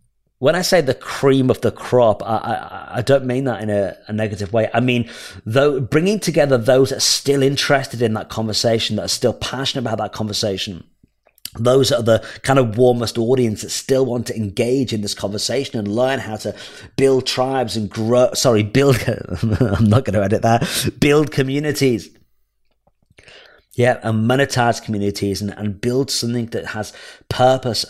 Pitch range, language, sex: 105-130 Hz, English, male